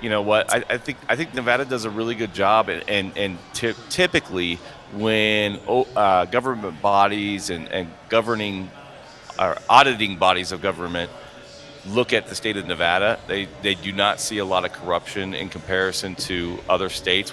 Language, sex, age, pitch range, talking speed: English, male, 40-59, 95-115 Hz, 175 wpm